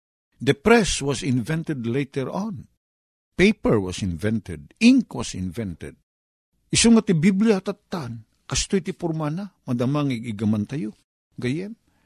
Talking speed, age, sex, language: 110 wpm, 50-69, male, Filipino